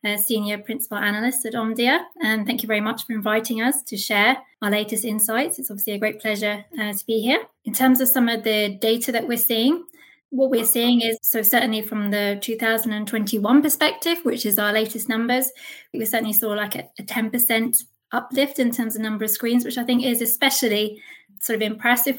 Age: 20-39